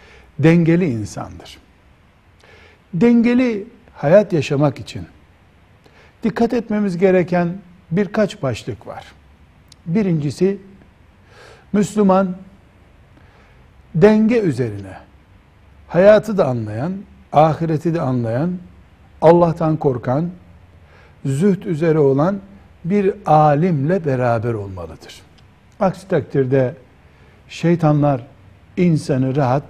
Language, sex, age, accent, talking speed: Turkish, male, 60-79, native, 75 wpm